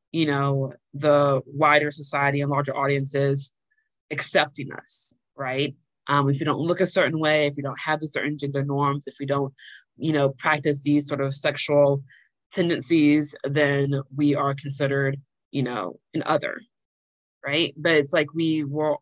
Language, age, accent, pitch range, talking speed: English, 20-39, American, 140-155 Hz, 165 wpm